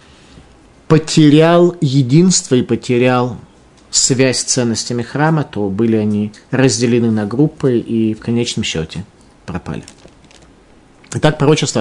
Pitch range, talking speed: 105-140 Hz, 105 wpm